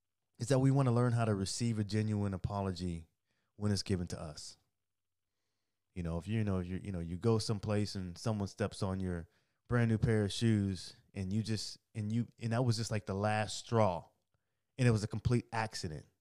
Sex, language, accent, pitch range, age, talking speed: male, English, American, 95-115 Hz, 20-39, 210 wpm